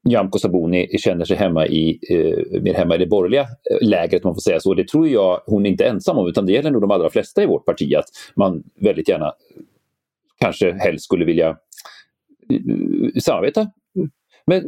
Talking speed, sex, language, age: 190 wpm, male, Swedish, 40-59